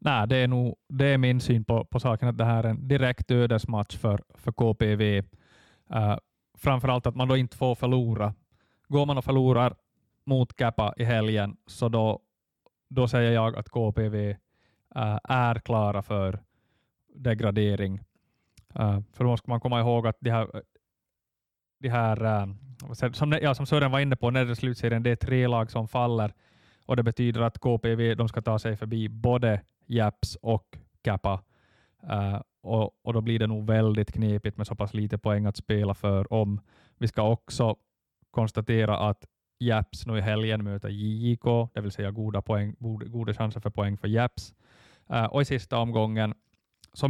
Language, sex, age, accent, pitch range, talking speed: Swedish, male, 20-39, Finnish, 105-120 Hz, 175 wpm